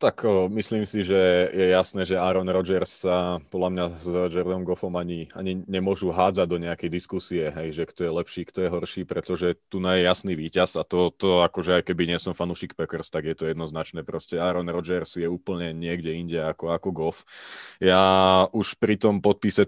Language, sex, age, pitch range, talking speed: Slovak, male, 20-39, 90-105 Hz, 190 wpm